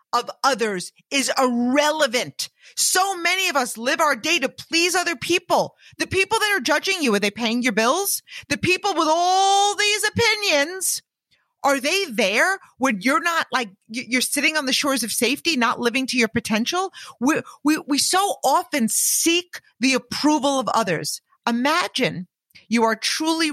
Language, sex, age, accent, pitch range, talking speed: English, female, 40-59, American, 230-345 Hz, 165 wpm